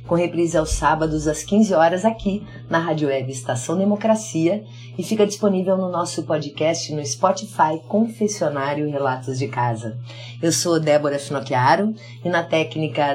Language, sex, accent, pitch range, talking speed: Portuguese, female, Brazilian, 135-175 Hz, 145 wpm